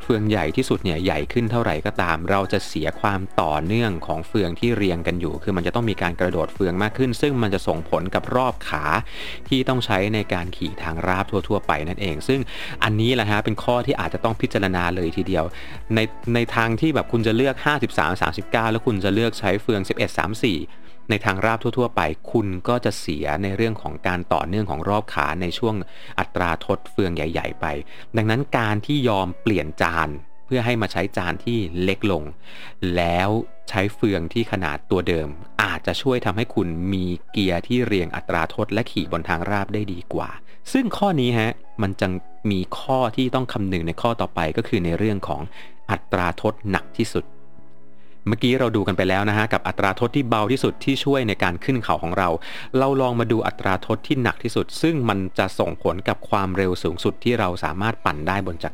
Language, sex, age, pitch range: Thai, male, 30-49, 90-115 Hz